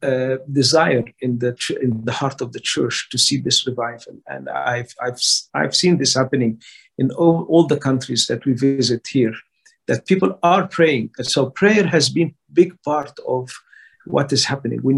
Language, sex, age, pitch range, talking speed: English, male, 50-69, 130-160 Hz, 180 wpm